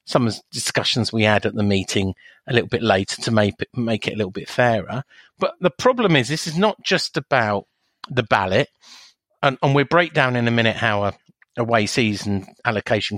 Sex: male